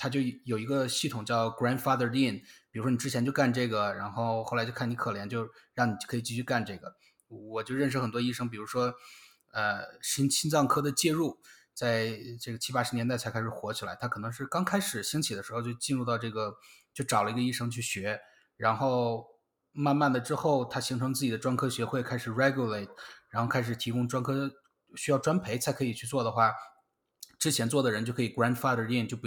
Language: Chinese